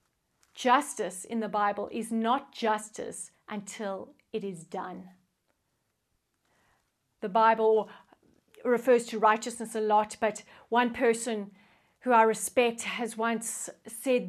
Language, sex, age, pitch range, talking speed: English, female, 40-59, 200-245 Hz, 115 wpm